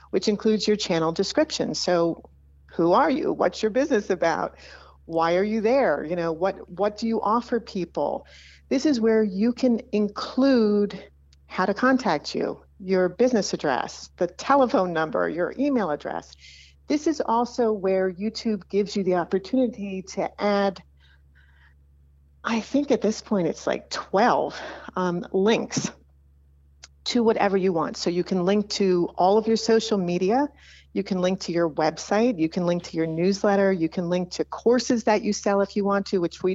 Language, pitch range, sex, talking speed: English, 165-215 Hz, female, 170 wpm